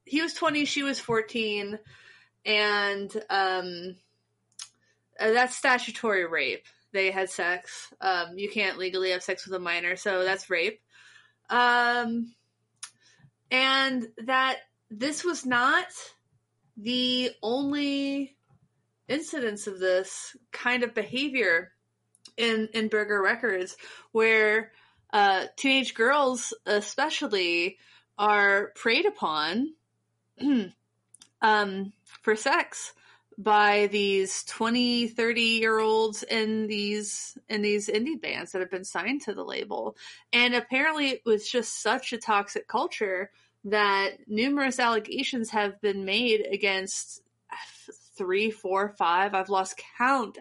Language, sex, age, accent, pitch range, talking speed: English, female, 30-49, American, 205-270 Hz, 115 wpm